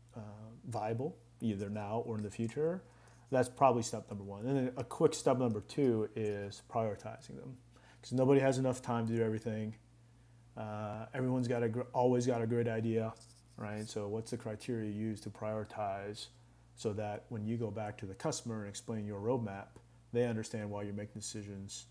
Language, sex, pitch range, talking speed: English, male, 105-120 Hz, 190 wpm